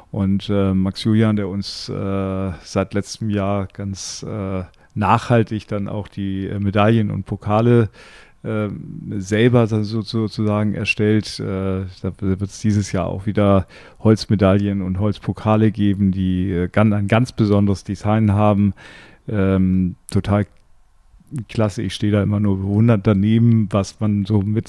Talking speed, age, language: 140 wpm, 40-59, German